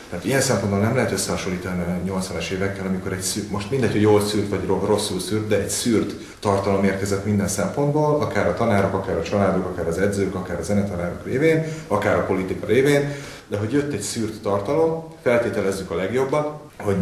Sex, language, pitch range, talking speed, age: male, Hungarian, 90-105 Hz, 185 wpm, 30-49